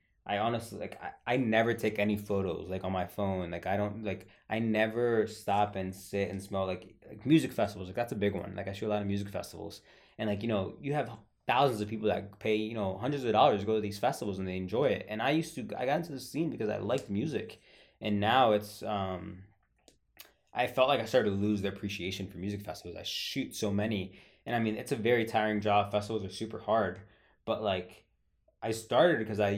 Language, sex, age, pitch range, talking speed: English, male, 20-39, 100-110 Hz, 235 wpm